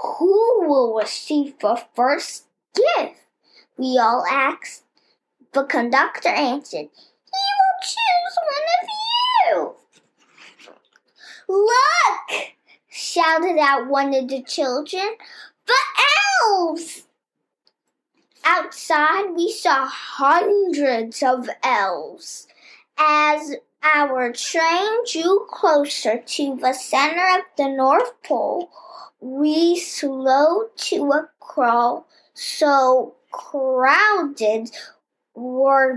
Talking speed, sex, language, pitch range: 90 wpm, male, English, 265-370 Hz